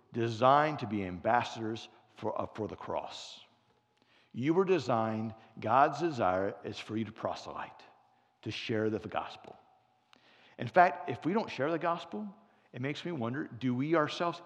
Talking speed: 160 wpm